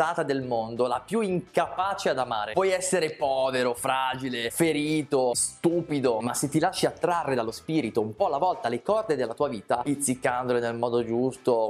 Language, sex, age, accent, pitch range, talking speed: Italian, male, 20-39, native, 120-170 Hz, 170 wpm